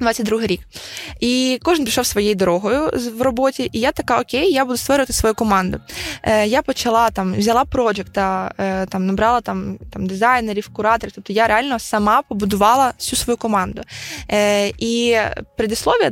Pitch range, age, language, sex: 200-240 Hz, 20-39, Ukrainian, female